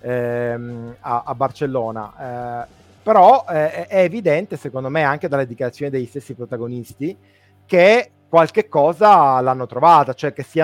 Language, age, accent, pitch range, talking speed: Italian, 30-49, native, 130-160 Hz, 145 wpm